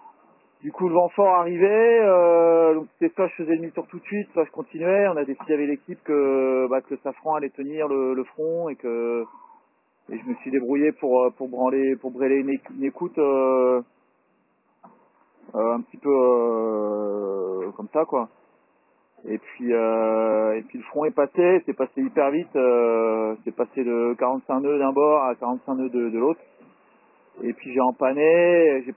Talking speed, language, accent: 180 wpm, French, French